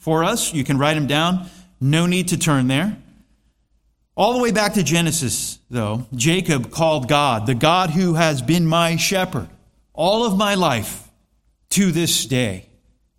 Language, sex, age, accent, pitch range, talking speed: English, male, 30-49, American, 145-190 Hz, 165 wpm